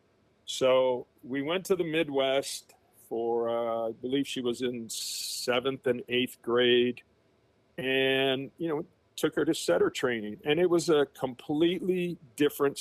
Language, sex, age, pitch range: English, male, 50-69, 120-145 Hz